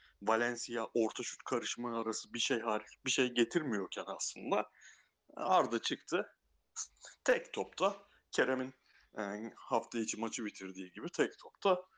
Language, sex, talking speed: Turkish, male, 125 wpm